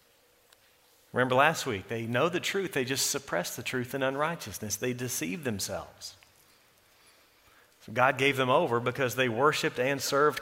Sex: male